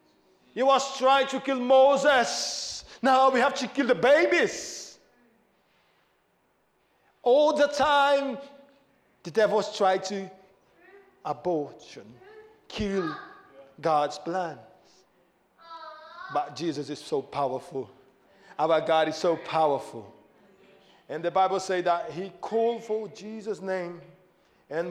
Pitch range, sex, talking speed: 185-260 Hz, male, 110 wpm